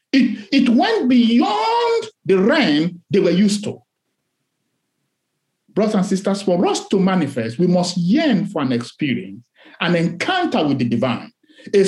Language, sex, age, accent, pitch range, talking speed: English, male, 50-69, Nigerian, 170-280 Hz, 145 wpm